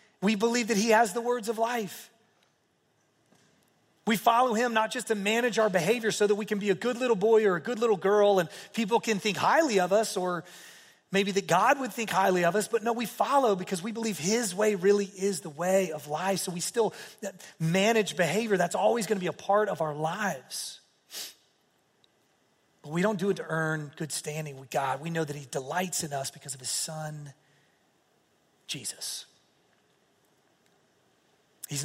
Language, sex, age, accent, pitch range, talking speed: English, male, 30-49, American, 165-210 Hz, 190 wpm